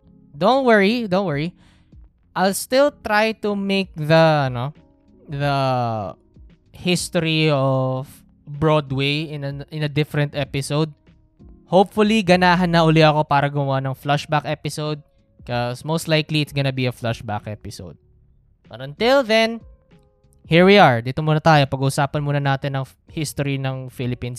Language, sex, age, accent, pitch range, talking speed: Filipino, male, 20-39, native, 130-180 Hz, 140 wpm